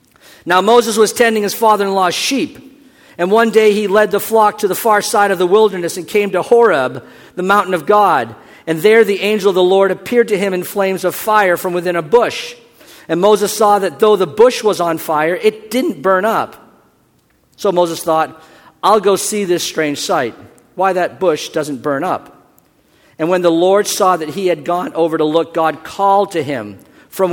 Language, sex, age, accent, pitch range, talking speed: English, male, 50-69, American, 170-205 Hz, 205 wpm